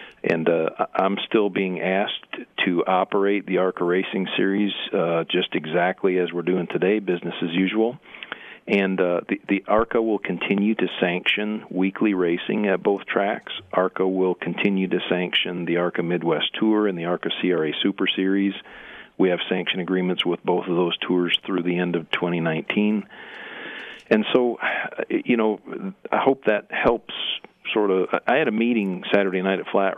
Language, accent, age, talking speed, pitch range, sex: English, American, 50-69, 165 wpm, 90-100 Hz, male